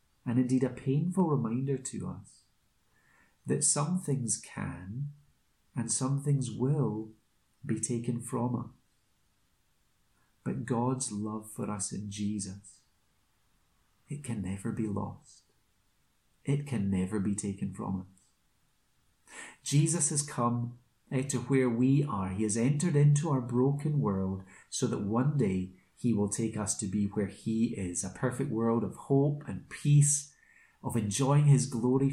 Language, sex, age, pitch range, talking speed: English, male, 30-49, 105-140 Hz, 140 wpm